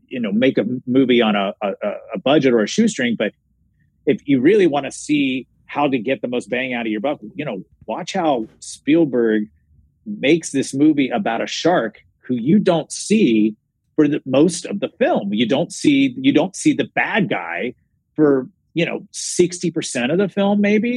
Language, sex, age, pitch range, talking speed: English, male, 30-49, 120-160 Hz, 195 wpm